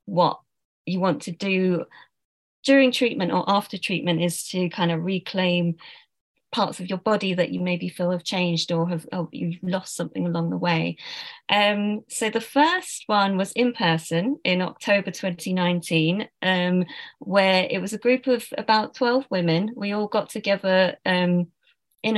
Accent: British